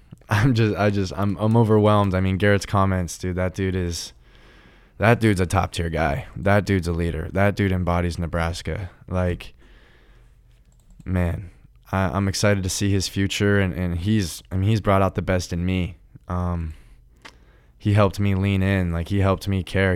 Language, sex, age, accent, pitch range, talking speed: English, male, 20-39, American, 85-100 Hz, 185 wpm